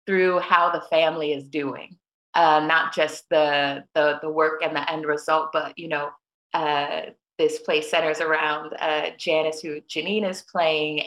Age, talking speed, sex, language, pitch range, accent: 20-39, 170 wpm, female, English, 155-175 Hz, American